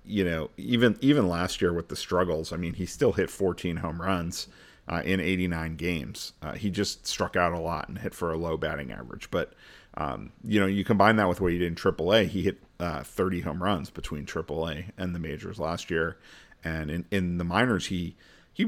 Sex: male